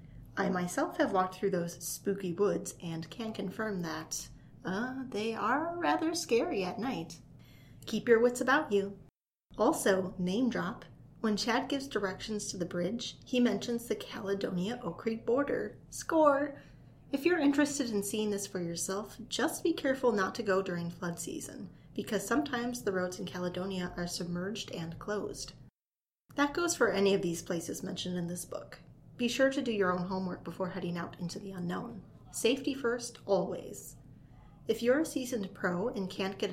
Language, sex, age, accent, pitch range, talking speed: English, female, 30-49, American, 180-235 Hz, 170 wpm